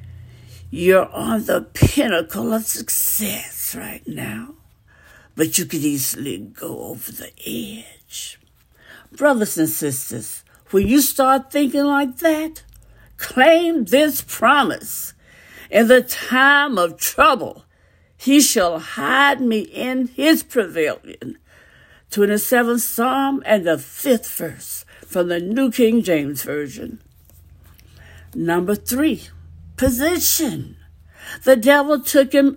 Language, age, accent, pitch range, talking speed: English, 60-79, American, 170-285 Hz, 110 wpm